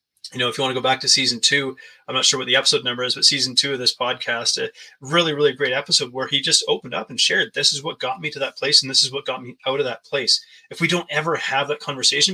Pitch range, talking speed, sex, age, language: 130-165 Hz, 300 wpm, male, 20-39, English